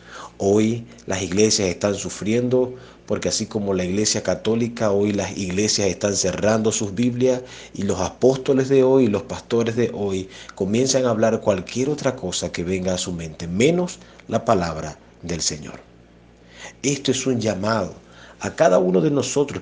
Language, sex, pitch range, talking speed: Spanish, male, 80-115 Hz, 160 wpm